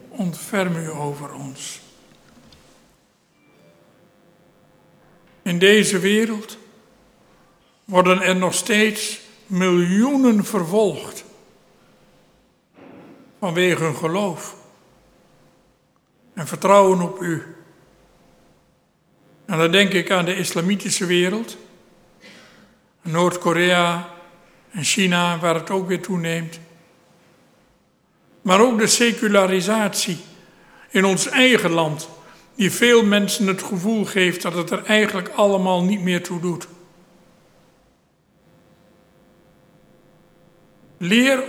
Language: Dutch